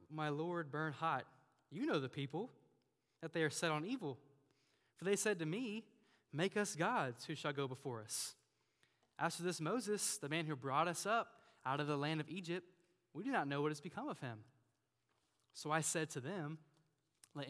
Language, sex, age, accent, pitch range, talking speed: English, male, 10-29, American, 130-190 Hz, 195 wpm